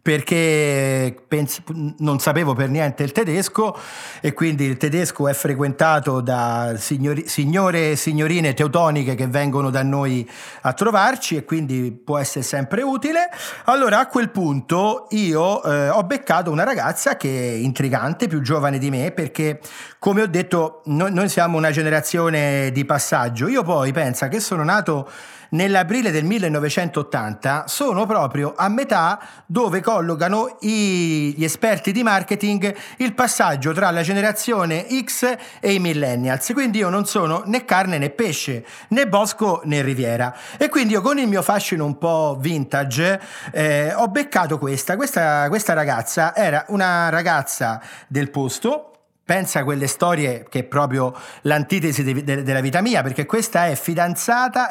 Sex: male